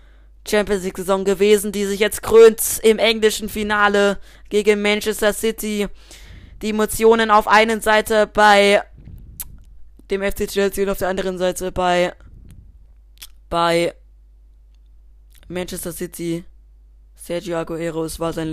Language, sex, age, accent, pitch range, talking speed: German, female, 20-39, German, 170-205 Hz, 115 wpm